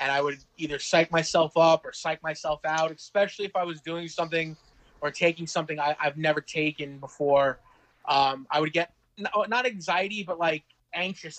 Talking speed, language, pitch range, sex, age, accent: 175 wpm, English, 155-190 Hz, male, 20-39, American